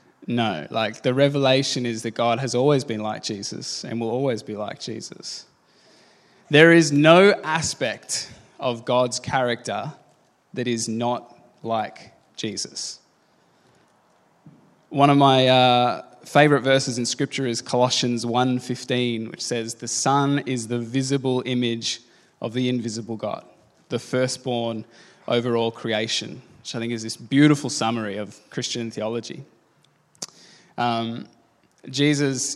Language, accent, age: English, Australian, 20-39